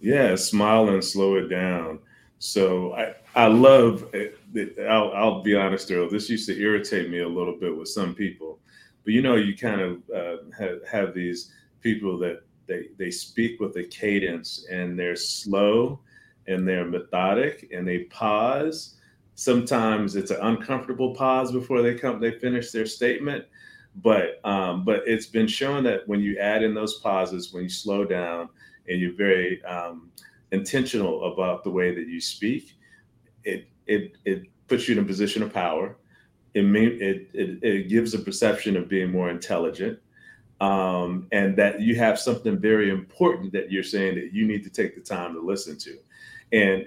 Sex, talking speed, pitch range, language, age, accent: male, 175 wpm, 90-115 Hz, English, 30-49, American